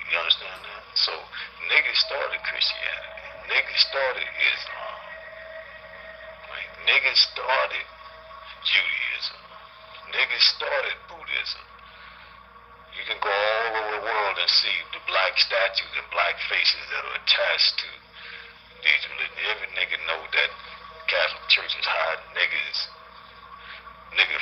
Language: English